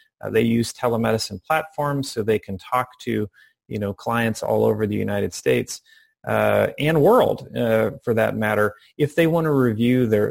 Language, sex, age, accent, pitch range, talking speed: English, male, 30-49, American, 110-140 Hz, 180 wpm